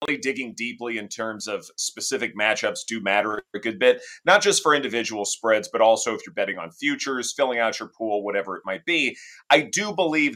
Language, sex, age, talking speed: English, male, 30-49, 205 wpm